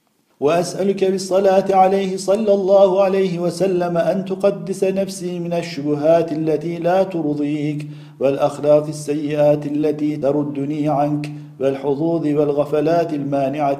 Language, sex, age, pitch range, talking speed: Turkish, male, 50-69, 145-175 Hz, 100 wpm